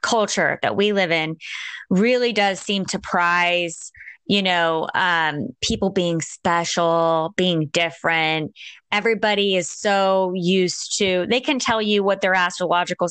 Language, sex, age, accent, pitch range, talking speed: English, female, 20-39, American, 170-215 Hz, 135 wpm